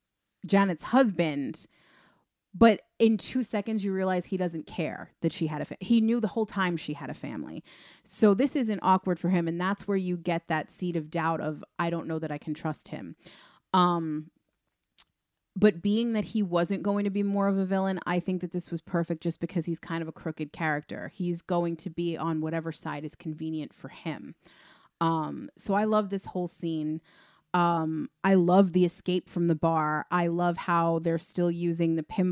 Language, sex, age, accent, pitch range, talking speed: English, female, 30-49, American, 165-190 Hz, 200 wpm